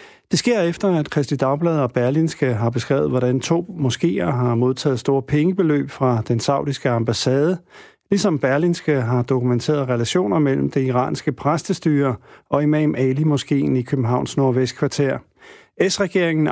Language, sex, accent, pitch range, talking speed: Danish, male, native, 130-165 Hz, 135 wpm